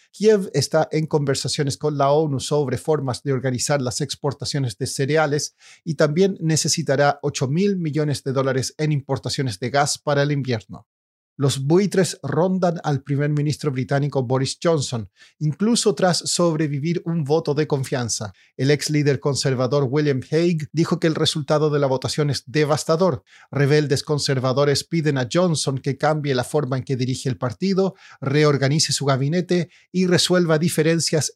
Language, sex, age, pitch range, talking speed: Spanish, male, 40-59, 135-160 Hz, 155 wpm